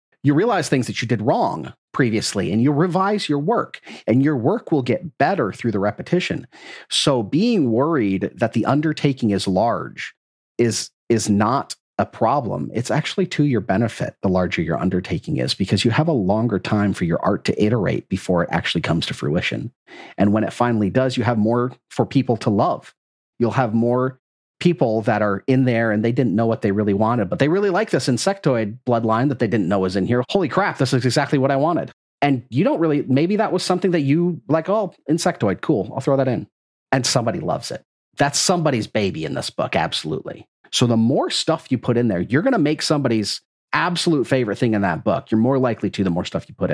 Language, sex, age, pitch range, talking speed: English, male, 40-59, 105-150 Hz, 215 wpm